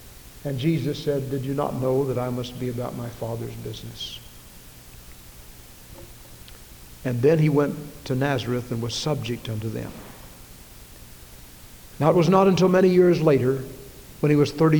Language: English